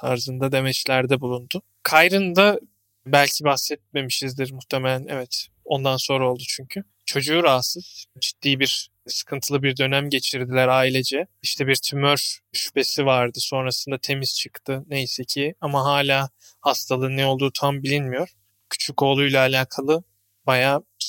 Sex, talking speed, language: male, 120 wpm, Turkish